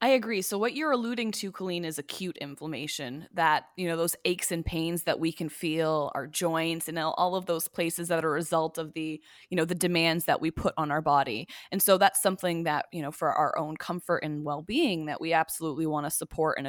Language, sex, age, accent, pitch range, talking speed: English, female, 20-39, American, 155-190 Hz, 235 wpm